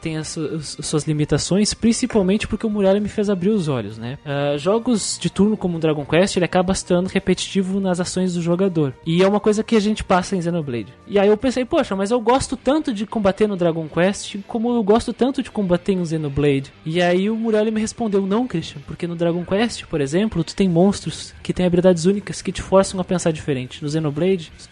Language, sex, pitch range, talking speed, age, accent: Portuguese, male, 175-235 Hz, 225 wpm, 20-39, Brazilian